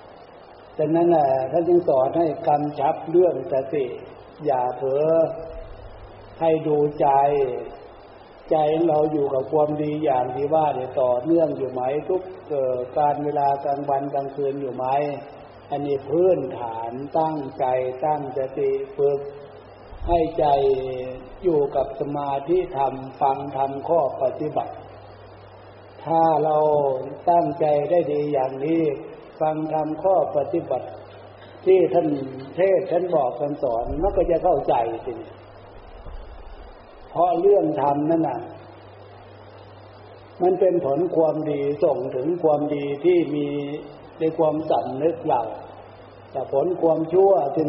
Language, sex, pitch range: Thai, male, 125-160 Hz